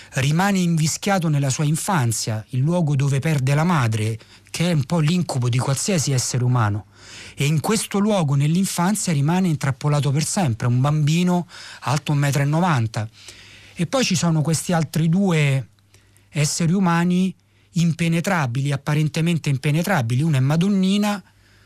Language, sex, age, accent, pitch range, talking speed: Italian, male, 30-49, native, 125-170 Hz, 140 wpm